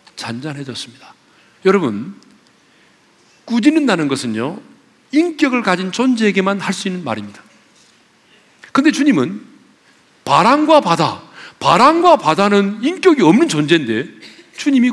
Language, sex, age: Korean, male, 40-59